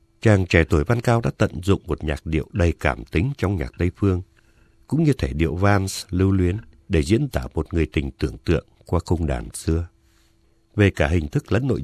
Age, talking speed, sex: 60-79, 220 wpm, male